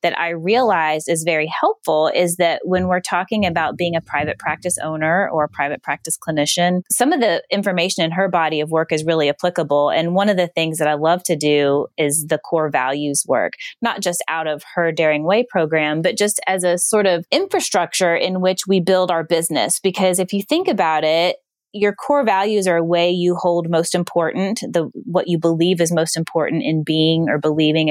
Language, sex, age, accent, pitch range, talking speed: English, female, 20-39, American, 155-190 Hz, 205 wpm